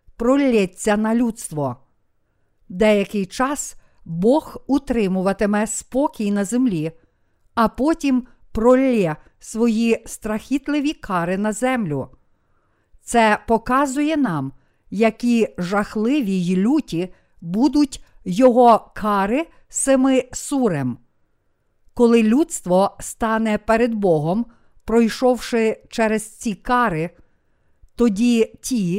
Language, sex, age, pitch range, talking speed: Ukrainian, female, 50-69, 180-245 Hz, 85 wpm